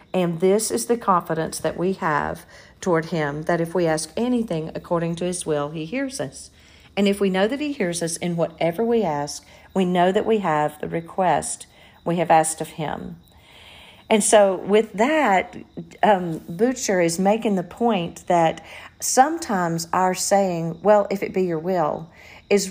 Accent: American